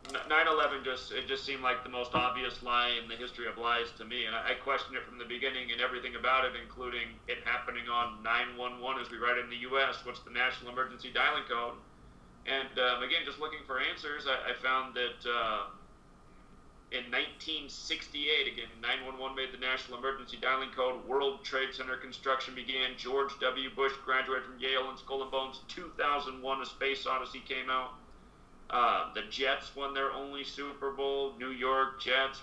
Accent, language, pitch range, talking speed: American, English, 125-135 Hz, 190 wpm